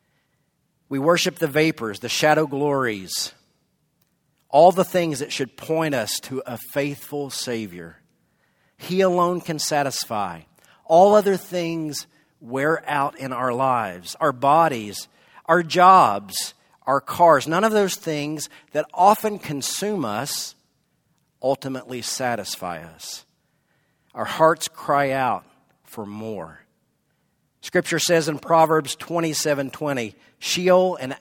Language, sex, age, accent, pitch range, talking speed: English, male, 50-69, American, 125-170 Hz, 115 wpm